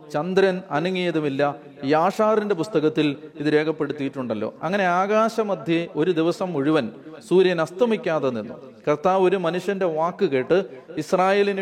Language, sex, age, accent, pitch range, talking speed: Malayalam, male, 40-59, native, 145-180 Hz, 105 wpm